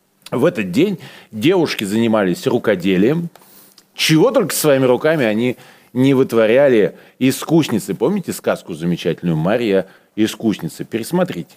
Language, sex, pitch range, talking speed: Russian, male, 95-155 Hz, 105 wpm